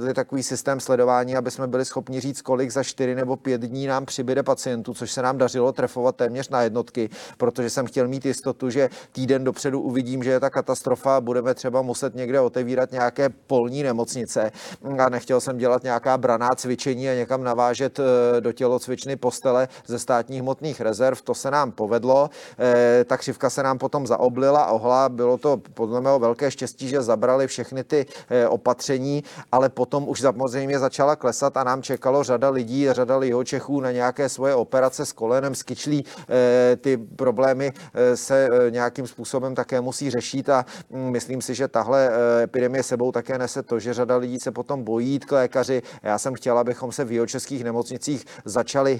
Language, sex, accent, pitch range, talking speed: Czech, male, native, 125-135 Hz, 175 wpm